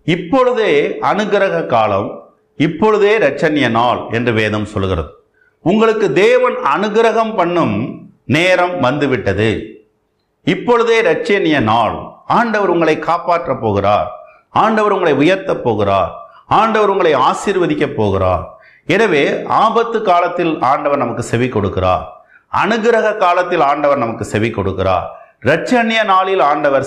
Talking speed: 100 wpm